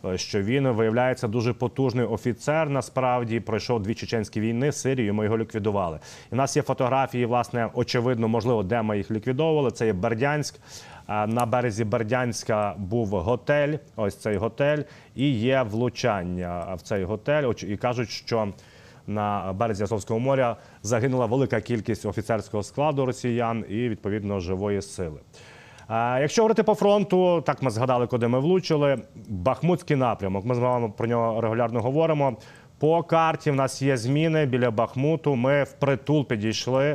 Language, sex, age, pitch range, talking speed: Ukrainian, male, 30-49, 110-135 Hz, 150 wpm